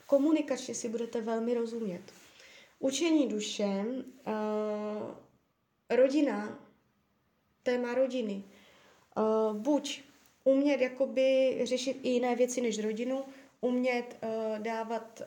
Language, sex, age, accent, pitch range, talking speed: Czech, female, 20-39, native, 220-250 Hz, 95 wpm